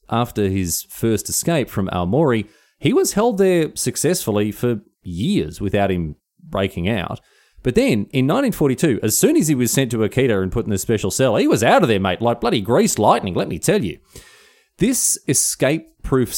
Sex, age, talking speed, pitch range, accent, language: male, 30-49, 185 wpm, 95-135 Hz, Australian, English